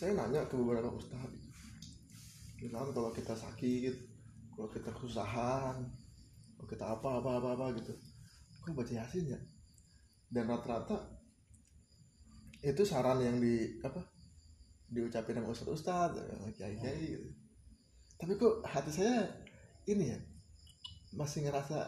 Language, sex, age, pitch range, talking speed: Indonesian, male, 20-39, 110-145 Hz, 125 wpm